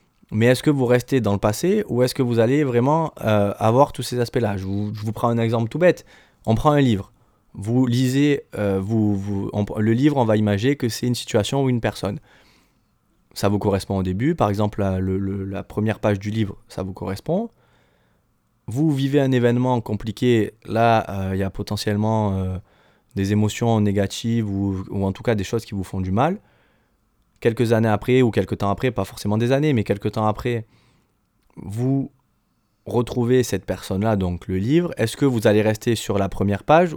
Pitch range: 105-125 Hz